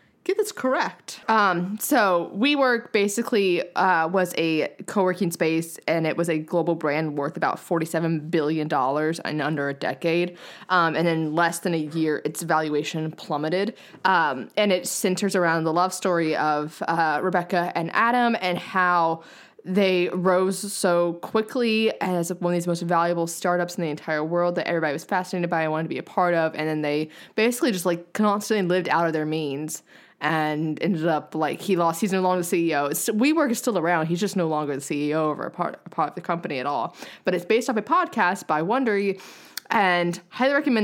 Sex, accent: female, American